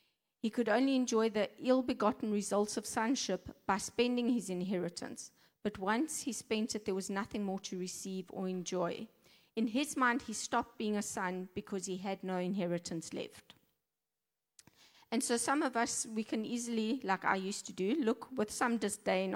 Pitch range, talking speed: 195-230 Hz, 175 wpm